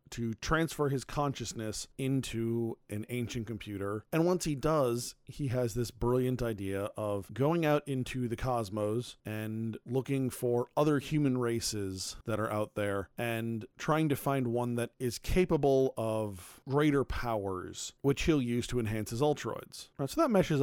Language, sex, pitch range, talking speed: English, male, 110-140 Hz, 155 wpm